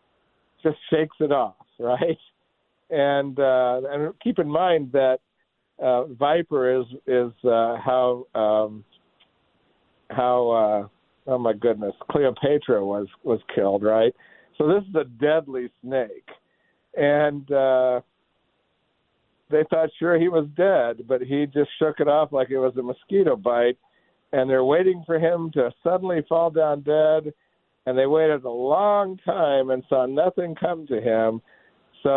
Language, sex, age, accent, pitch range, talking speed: English, male, 60-79, American, 120-150 Hz, 145 wpm